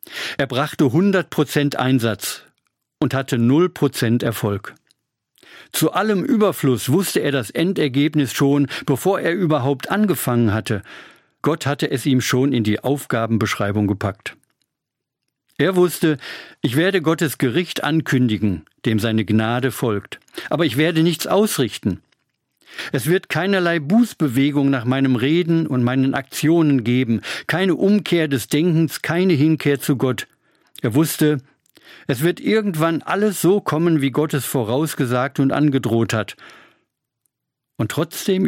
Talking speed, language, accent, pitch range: 130 wpm, German, German, 120-160 Hz